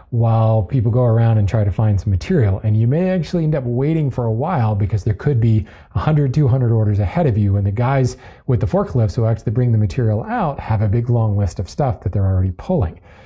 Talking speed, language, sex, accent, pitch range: 240 wpm, English, male, American, 110-150 Hz